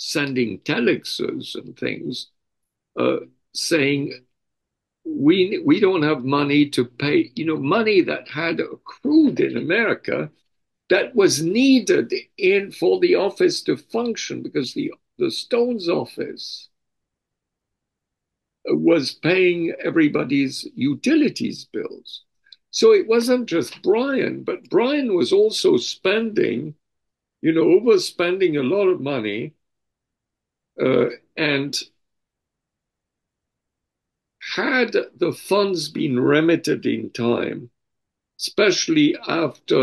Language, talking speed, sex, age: English, 100 wpm, male, 60-79